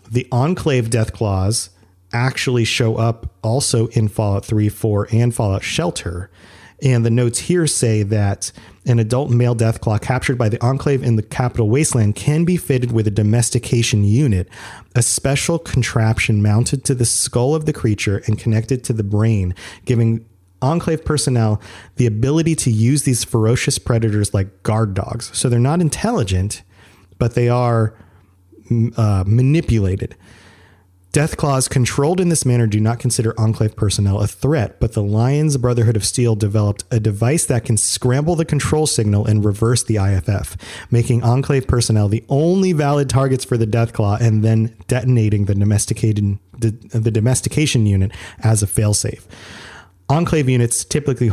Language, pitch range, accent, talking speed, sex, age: English, 105-125 Hz, American, 155 wpm, male, 30-49